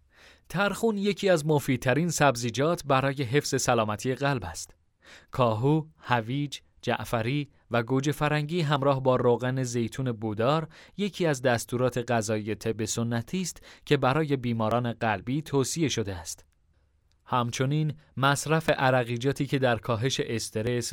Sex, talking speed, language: male, 120 wpm, English